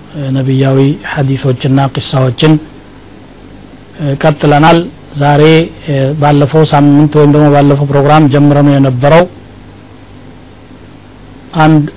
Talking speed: 75 wpm